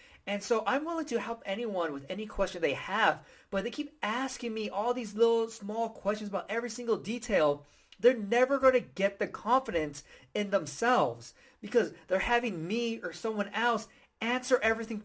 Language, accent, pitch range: English, American, 190-245 Hz